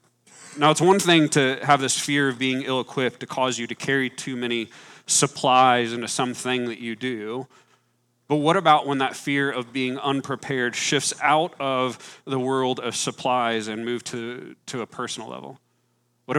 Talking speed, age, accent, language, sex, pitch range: 175 wpm, 40-59, American, English, male, 120-140 Hz